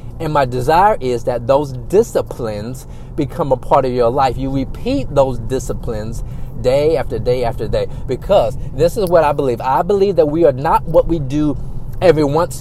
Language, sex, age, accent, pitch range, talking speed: English, male, 40-59, American, 130-165 Hz, 185 wpm